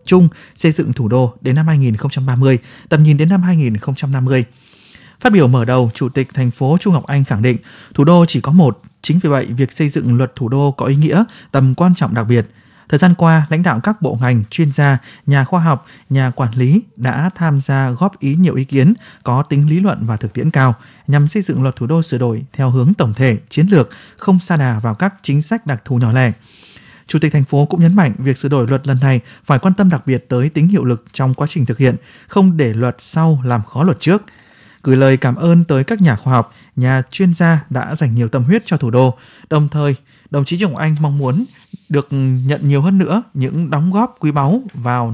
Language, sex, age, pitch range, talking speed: Vietnamese, male, 20-39, 130-170 Hz, 240 wpm